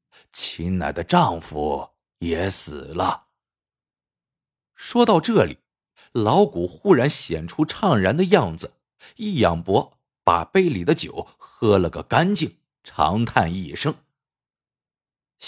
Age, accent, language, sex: 50-69, native, Chinese, male